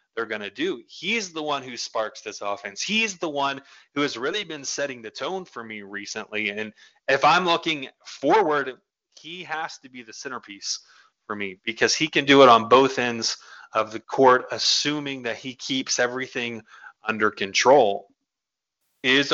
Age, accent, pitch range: 30-49, American, 120-150 Hz